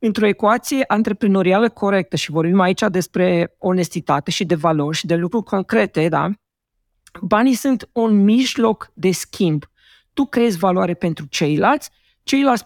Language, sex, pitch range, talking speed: Romanian, female, 185-250 Hz, 140 wpm